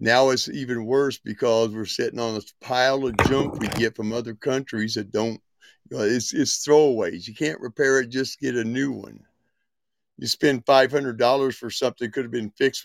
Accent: American